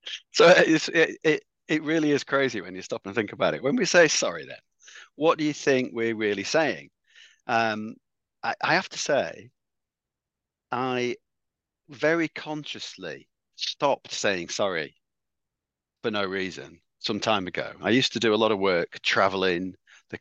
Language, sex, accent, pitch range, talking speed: English, male, British, 95-120 Hz, 160 wpm